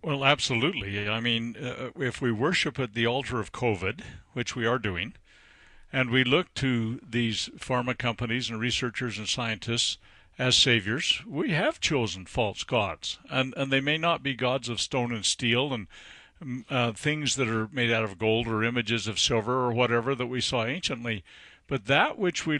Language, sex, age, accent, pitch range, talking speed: English, male, 50-69, American, 115-150 Hz, 185 wpm